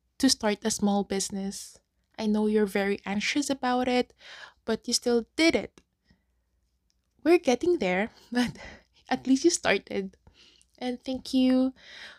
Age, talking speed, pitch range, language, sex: 20-39, 140 wpm, 205-265 Hz, English, female